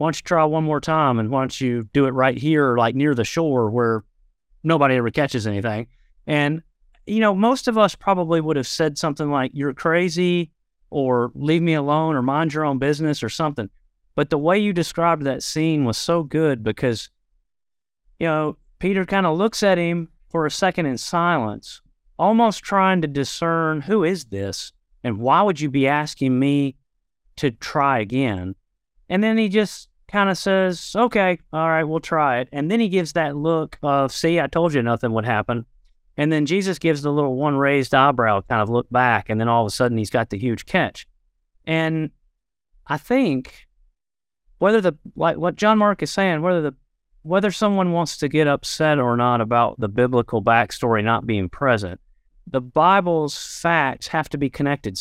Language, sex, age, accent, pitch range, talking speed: English, male, 30-49, American, 120-165 Hz, 190 wpm